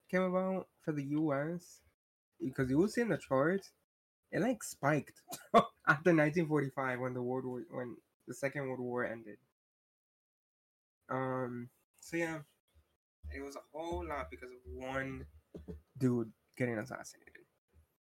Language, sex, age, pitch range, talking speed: English, male, 20-39, 120-150 Hz, 135 wpm